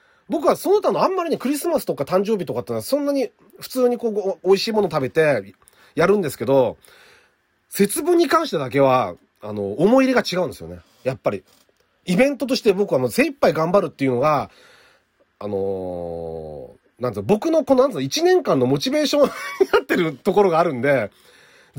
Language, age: Japanese, 40-59